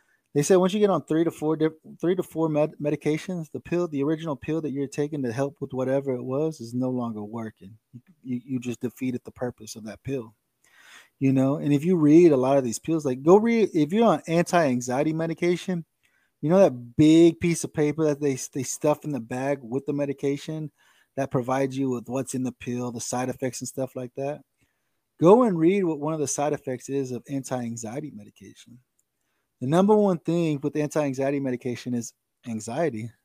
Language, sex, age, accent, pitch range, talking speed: English, male, 20-39, American, 125-160 Hz, 205 wpm